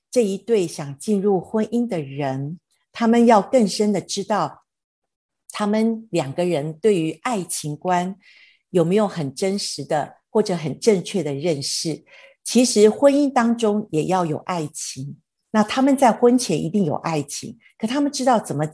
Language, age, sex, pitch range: Chinese, 50-69, female, 170-225 Hz